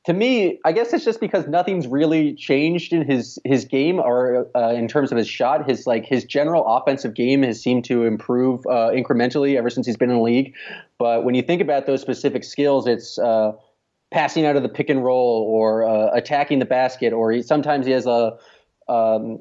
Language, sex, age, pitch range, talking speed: English, male, 20-39, 115-140 Hz, 215 wpm